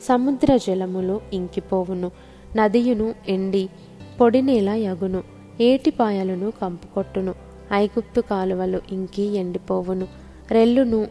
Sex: female